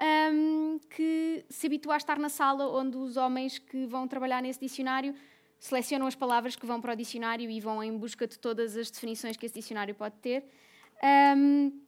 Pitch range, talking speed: 230-280 Hz, 190 wpm